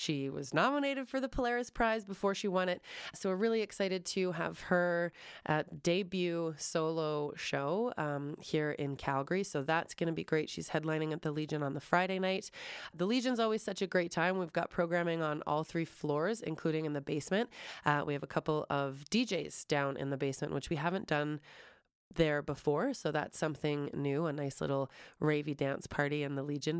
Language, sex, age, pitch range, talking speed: English, female, 20-39, 150-185 Hz, 200 wpm